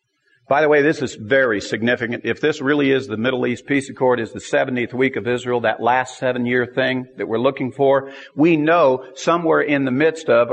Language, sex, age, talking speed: English, male, 50-69, 210 wpm